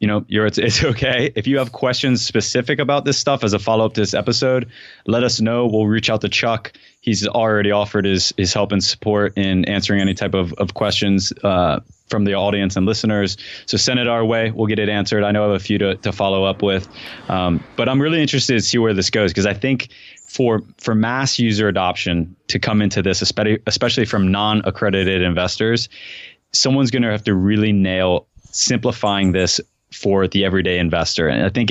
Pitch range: 95-110 Hz